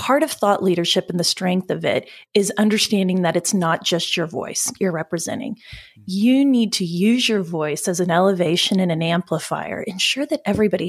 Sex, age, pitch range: female, 30-49, 175-215 Hz